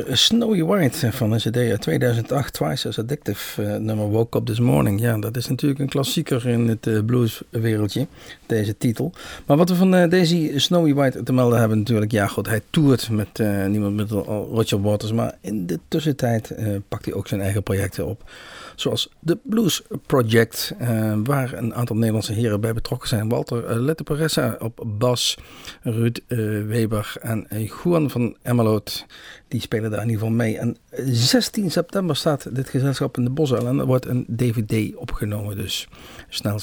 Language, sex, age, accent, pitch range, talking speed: Dutch, male, 50-69, Dutch, 110-135 Hz, 170 wpm